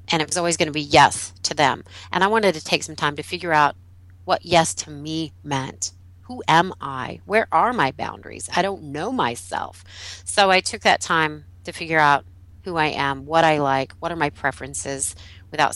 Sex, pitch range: female, 95-160 Hz